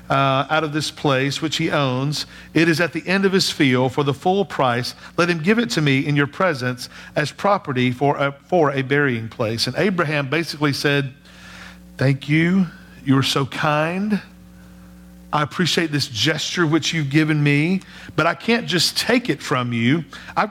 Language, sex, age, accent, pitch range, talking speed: English, male, 50-69, American, 140-185 Hz, 185 wpm